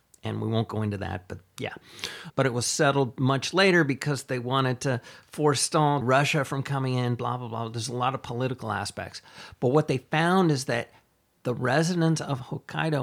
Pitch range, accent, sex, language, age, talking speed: 115-155 Hz, American, male, English, 40-59, 195 wpm